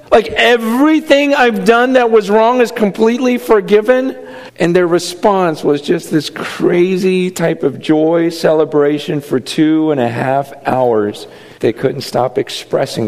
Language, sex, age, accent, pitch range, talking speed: English, male, 50-69, American, 150-215 Hz, 140 wpm